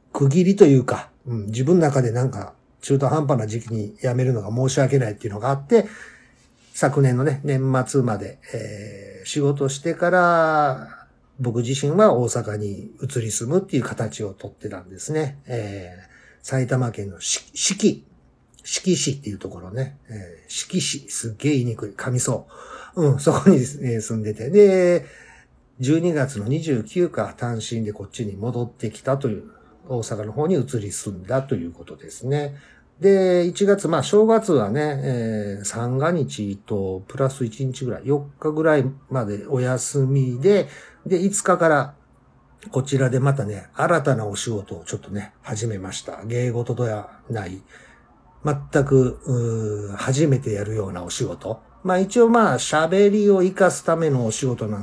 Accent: native